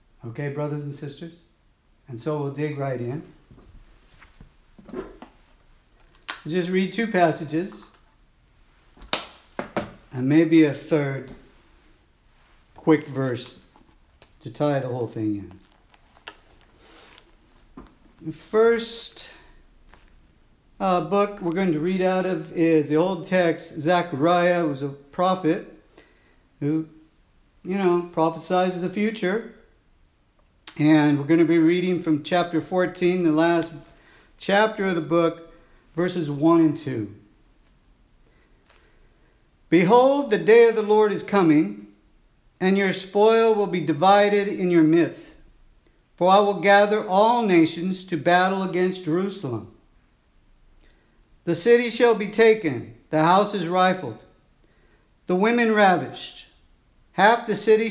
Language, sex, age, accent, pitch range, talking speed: English, male, 50-69, American, 150-190 Hz, 115 wpm